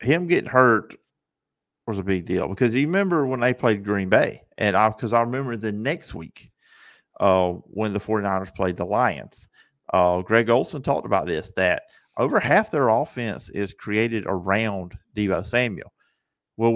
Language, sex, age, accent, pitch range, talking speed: English, male, 50-69, American, 105-135 Hz, 170 wpm